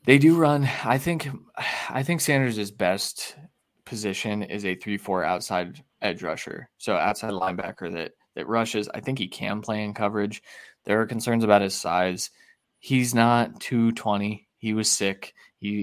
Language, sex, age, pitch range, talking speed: English, male, 20-39, 100-120 Hz, 165 wpm